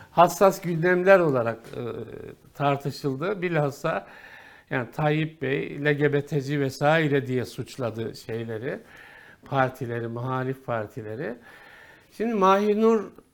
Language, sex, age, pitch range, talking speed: Turkish, male, 60-79, 135-195 Hz, 80 wpm